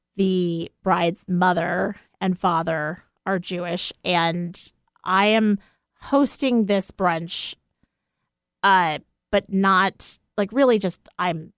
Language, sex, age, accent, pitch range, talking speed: English, female, 30-49, American, 175-220 Hz, 105 wpm